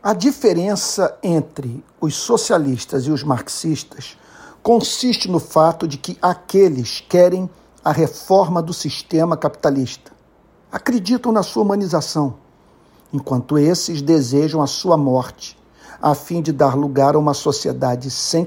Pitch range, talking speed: 145-185 Hz, 125 wpm